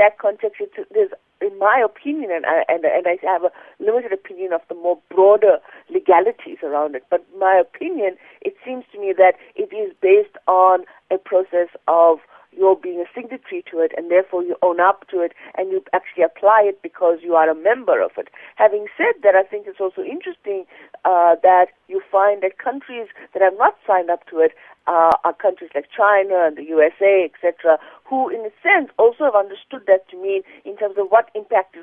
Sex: female